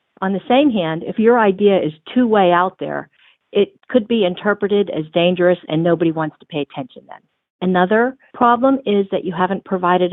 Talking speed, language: 185 wpm, English